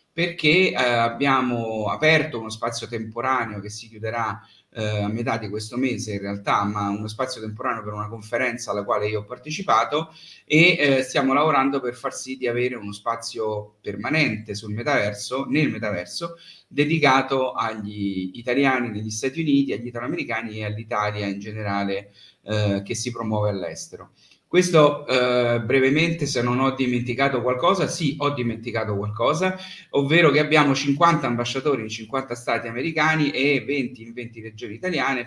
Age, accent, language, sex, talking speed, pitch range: 30-49, native, Italian, male, 155 wpm, 110-140 Hz